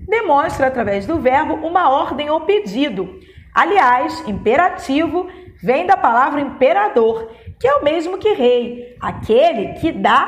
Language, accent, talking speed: Portuguese, Brazilian, 135 wpm